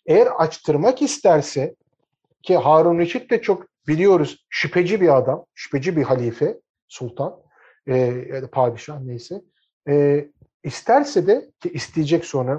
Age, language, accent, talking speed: 50-69, Turkish, native, 130 wpm